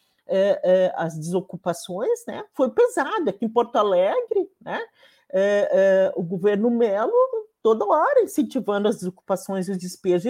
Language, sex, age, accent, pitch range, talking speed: Portuguese, male, 50-69, Brazilian, 180-280 Hz, 140 wpm